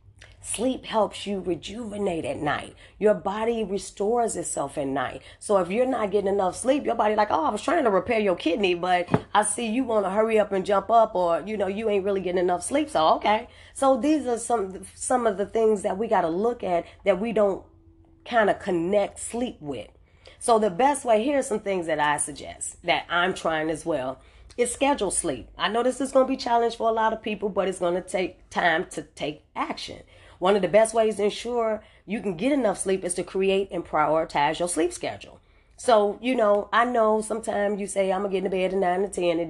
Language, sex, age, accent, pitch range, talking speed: English, female, 30-49, American, 175-220 Hz, 235 wpm